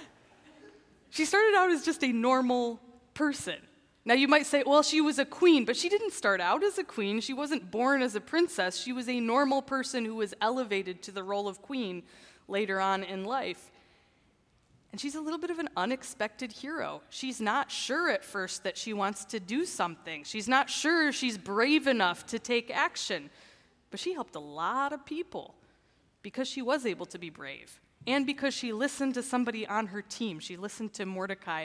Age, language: 20-39, English